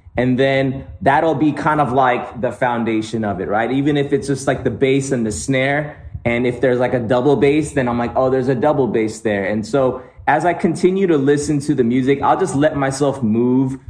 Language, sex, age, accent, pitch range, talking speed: English, male, 30-49, American, 115-145 Hz, 230 wpm